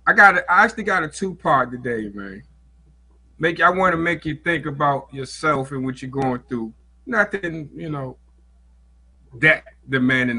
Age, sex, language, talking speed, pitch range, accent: 30-49, male, English, 170 wpm, 120-150 Hz, American